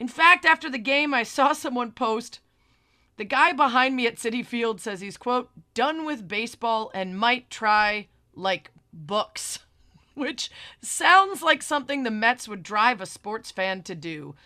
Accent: American